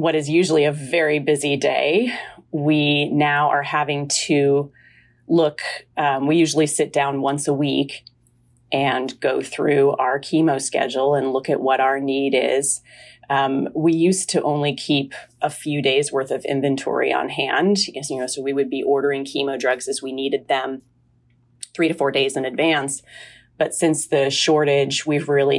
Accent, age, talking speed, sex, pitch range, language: American, 30-49, 170 wpm, female, 135-145 Hz, English